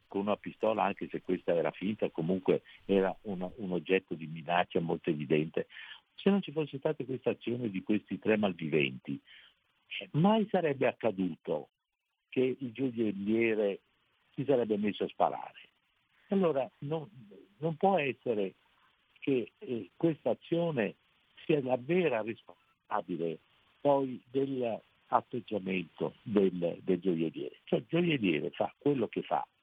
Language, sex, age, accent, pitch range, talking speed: Italian, male, 60-79, native, 100-150 Hz, 130 wpm